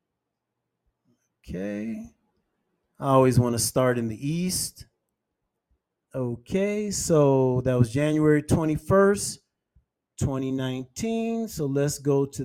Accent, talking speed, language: American, 90 wpm, English